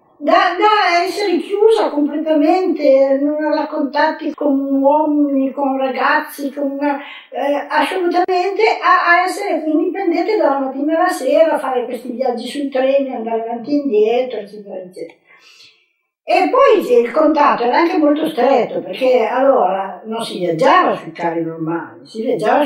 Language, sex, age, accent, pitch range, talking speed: Italian, female, 50-69, native, 195-305 Hz, 145 wpm